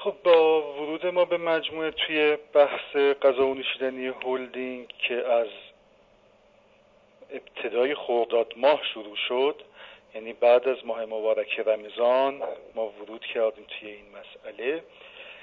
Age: 50-69